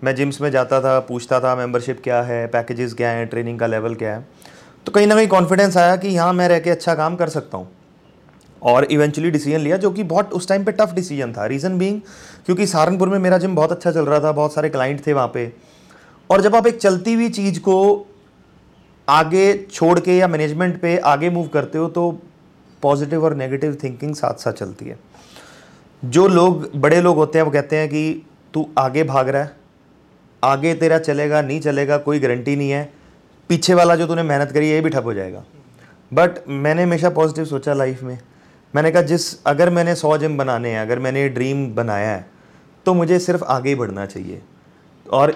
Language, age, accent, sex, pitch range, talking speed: Hindi, 30-49, native, male, 125-170 Hz, 210 wpm